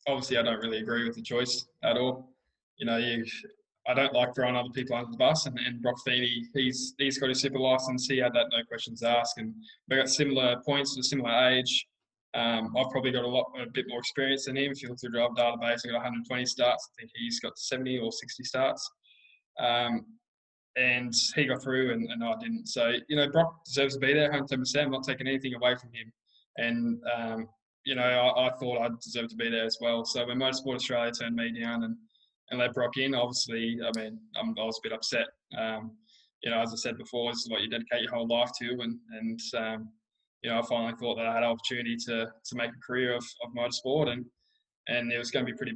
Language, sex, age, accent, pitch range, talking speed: English, male, 20-39, Australian, 115-130 Hz, 240 wpm